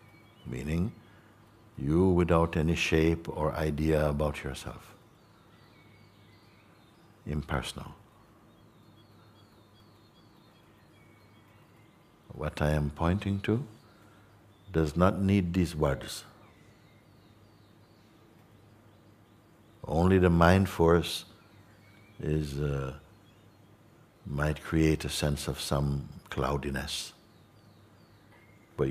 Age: 60-79